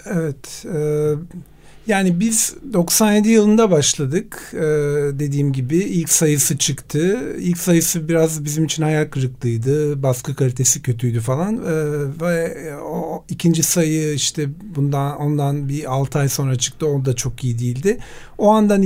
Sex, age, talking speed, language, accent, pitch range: male, 40-59, 130 wpm, Turkish, native, 140-170 Hz